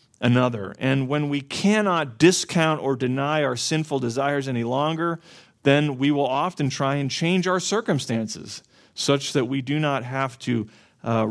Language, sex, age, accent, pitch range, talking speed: English, male, 40-59, American, 125-155 Hz, 160 wpm